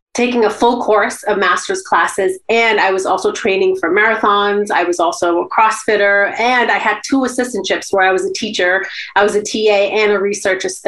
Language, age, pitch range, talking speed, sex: English, 30-49, 190-230 Hz, 200 wpm, female